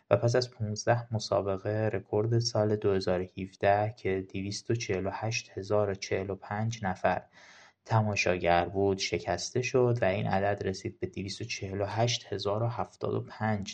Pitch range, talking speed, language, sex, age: 95-115 Hz, 90 wpm, Persian, male, 20-39